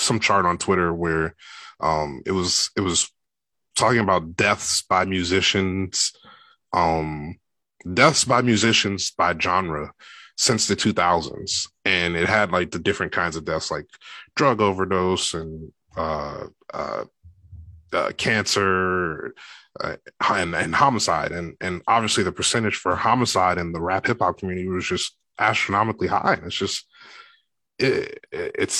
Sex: male